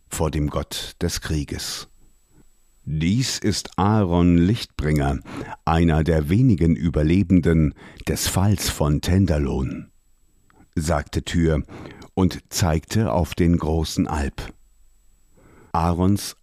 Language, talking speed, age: German, 95 wpm, 50-69